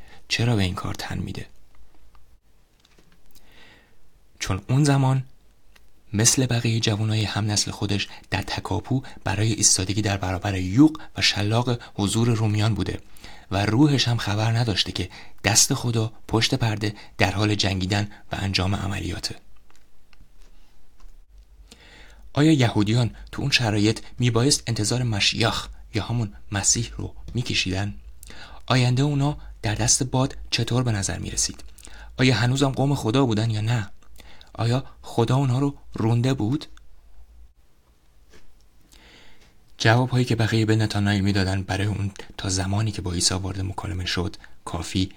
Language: Persian